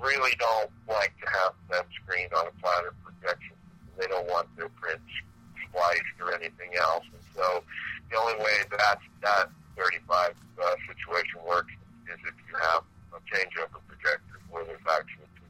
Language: English